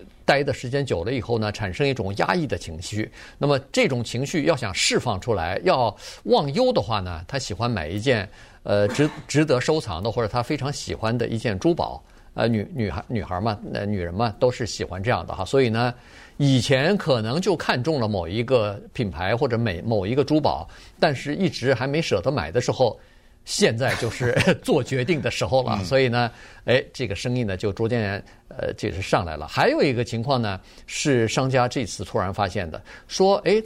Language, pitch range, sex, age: Chinese, 110-150 Hz, male, 50-69